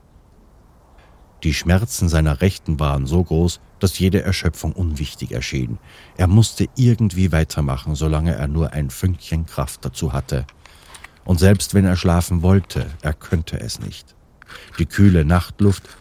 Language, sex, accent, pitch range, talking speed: German, male, German, 80-95 Hz, 140 wpm